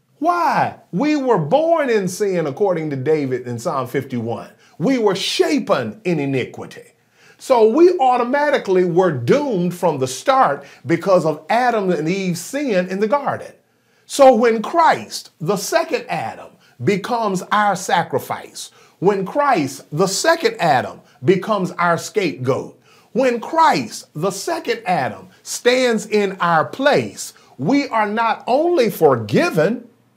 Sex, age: male, 40-59